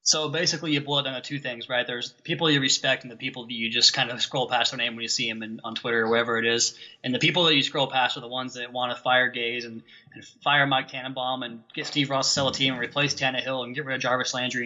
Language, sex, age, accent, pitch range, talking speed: English, male, 20-39, American, 120-140 Hz, 305 wpm